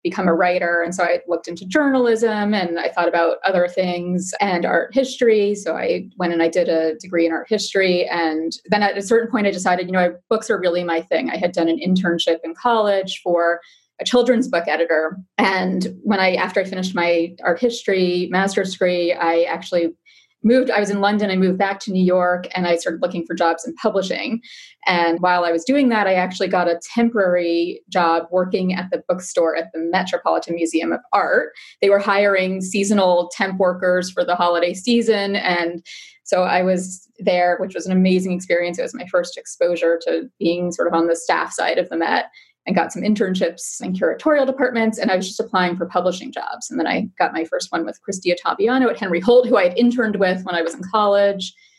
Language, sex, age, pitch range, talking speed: English, female, 30-49, 175-210 Hz, 215 wpm